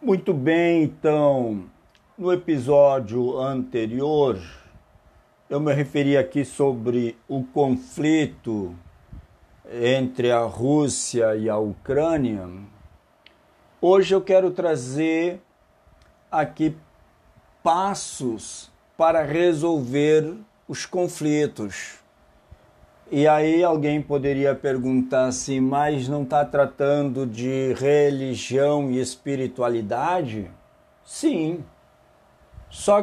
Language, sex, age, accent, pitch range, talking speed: Portuguese, male, 50-69, Brazilian, 130-170 Hz, 80 wpm